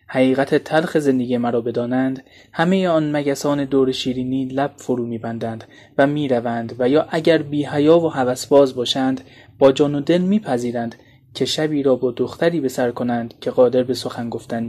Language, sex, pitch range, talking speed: Persian, male, 125-145 Hz, 170 wpm